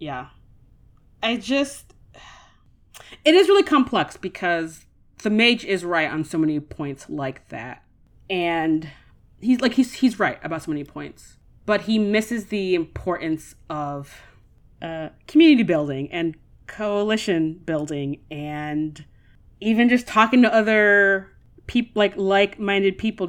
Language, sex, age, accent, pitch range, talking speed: English, female, 30-49, American, 150-195 Hz, 130 wpm